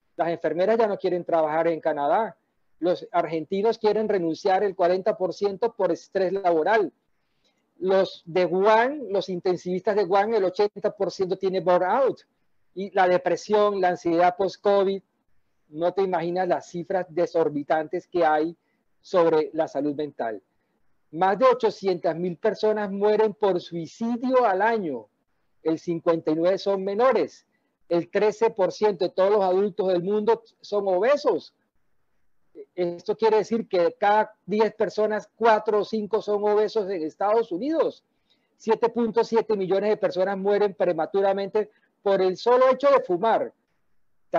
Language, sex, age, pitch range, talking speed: Spanish, male, 40-59, 175-215 Hz, 130 wpm